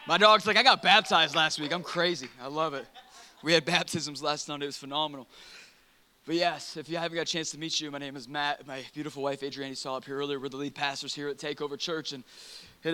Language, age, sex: English, 20-39, male